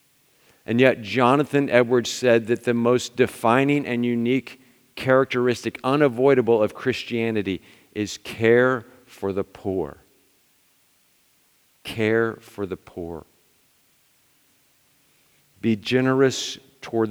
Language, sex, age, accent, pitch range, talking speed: English, male, 50-69, American, 100-125 Hz, 95 wpm